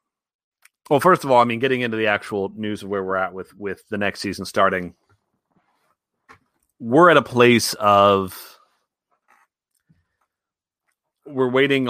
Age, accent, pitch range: 30-49, American, 95-110 Hz